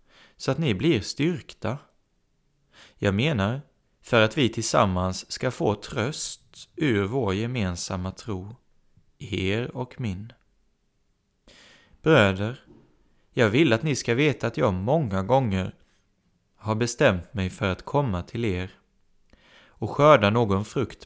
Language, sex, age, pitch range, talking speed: Swedish, male, 30-49, 95-130 Hz, 125 wpm